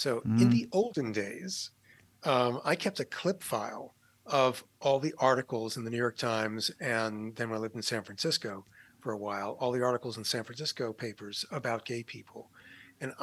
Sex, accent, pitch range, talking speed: male, American, 115-145 Hz, 190 wpm